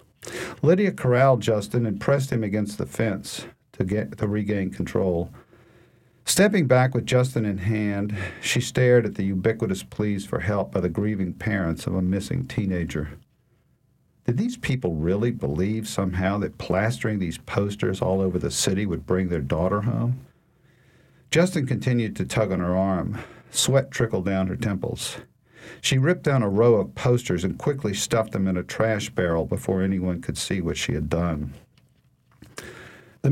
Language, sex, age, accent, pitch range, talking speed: English, male, 50-69, American, 95-125 Hz, 165 wpm